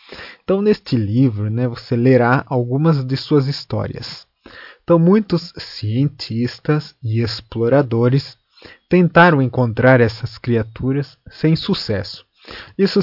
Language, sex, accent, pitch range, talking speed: Portuguese, male, Brazilian, 115-140 Hz, 100 wpm